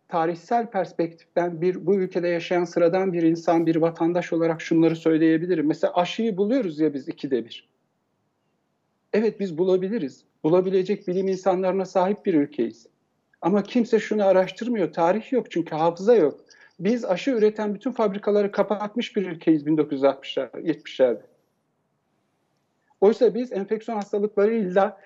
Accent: native